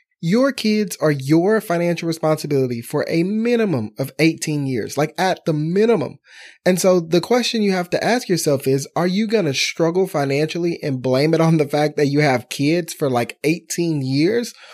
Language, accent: English, American